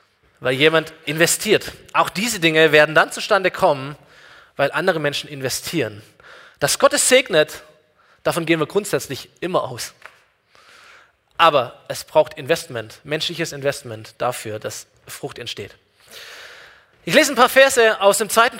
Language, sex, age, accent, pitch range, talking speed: German, male, 20-39, German, 155-225 Hz, 135 wpm